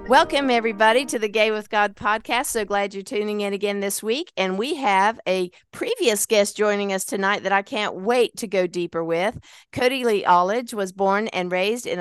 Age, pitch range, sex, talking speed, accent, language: 50-69, 175-220 Hz, female, 205 wpm, American, English